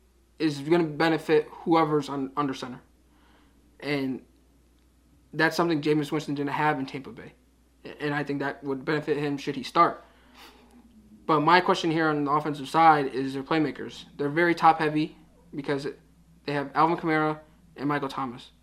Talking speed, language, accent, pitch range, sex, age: 160 wpm, English, American, 135-160 Hz, male, 20-39